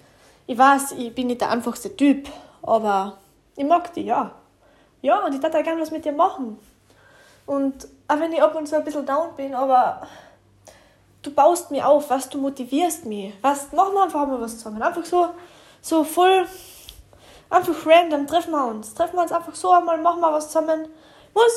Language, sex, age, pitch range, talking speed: German, female, 10-29, 230-320 Hz, 200 wpm